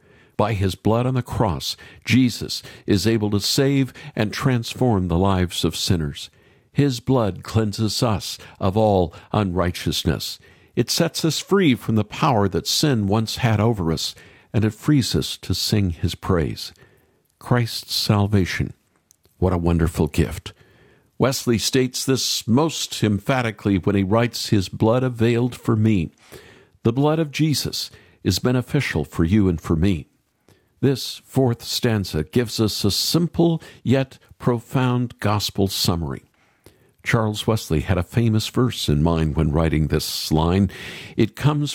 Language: English